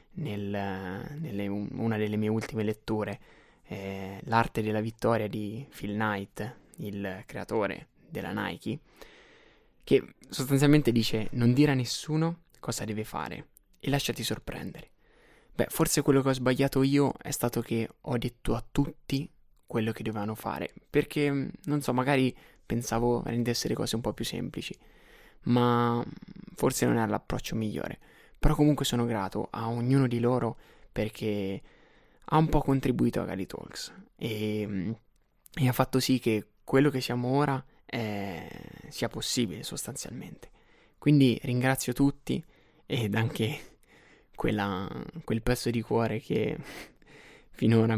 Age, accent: 20-39, native